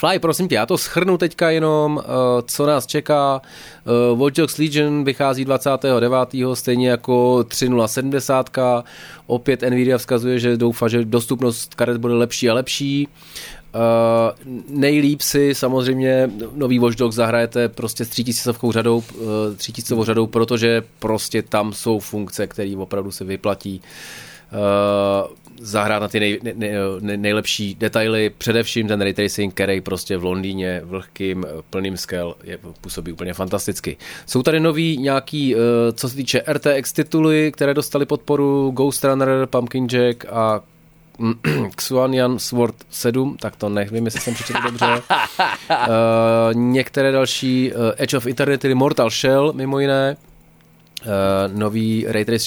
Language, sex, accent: Czech, male, native